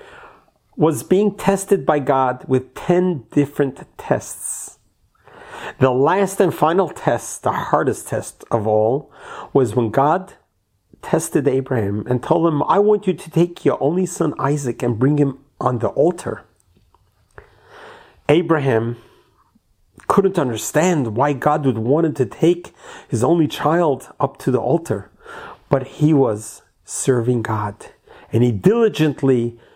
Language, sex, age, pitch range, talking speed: English, male, 40-59, 125-180 Hz, 135 wpm